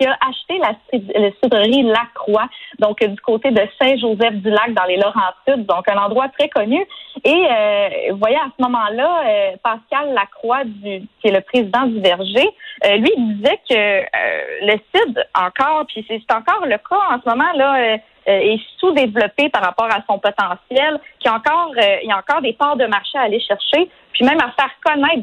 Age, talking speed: 30-49, 205 wpm